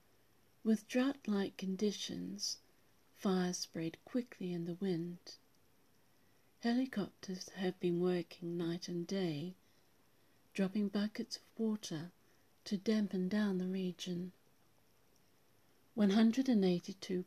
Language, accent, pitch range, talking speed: English, British, 170-200 Hz, 95 wpm